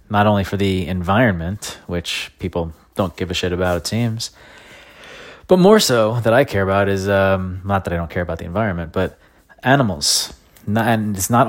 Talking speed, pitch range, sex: 190 wpm, 90-110 Hz, male